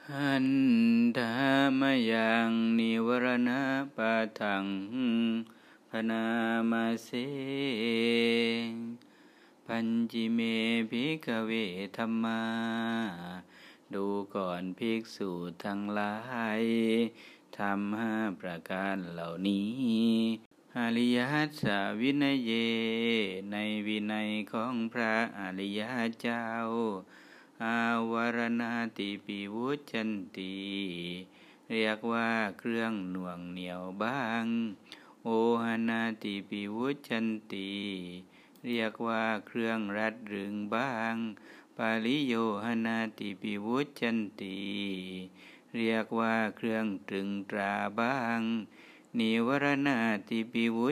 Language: Thai